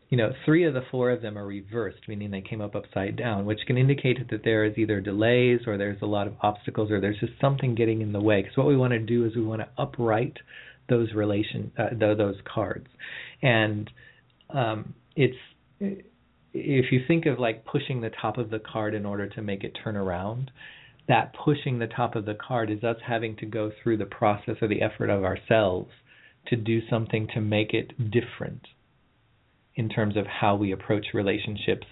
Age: 40-59